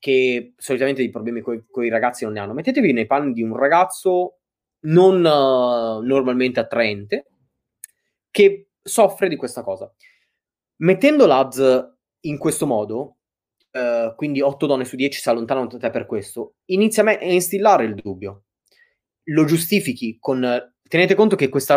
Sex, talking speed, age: male, 155 wpm, 20-39